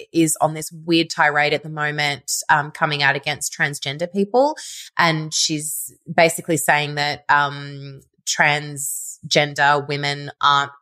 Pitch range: 160-240 Hz